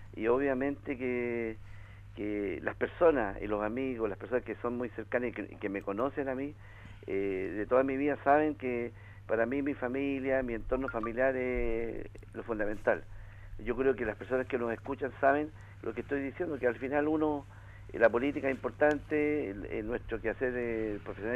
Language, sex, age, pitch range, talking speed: Spanish, male, 50-69, 105-135 Hz, 190 wpm